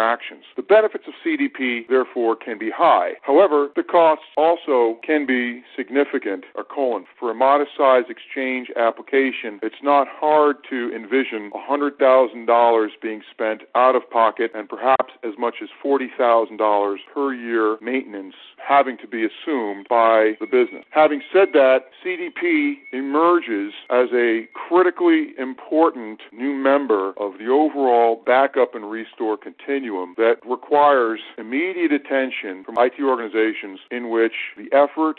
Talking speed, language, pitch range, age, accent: 130 wpm, English, 115-150 Hz, 40-59, American